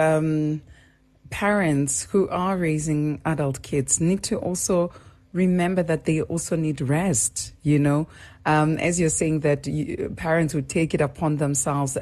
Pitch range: 145-175 Hz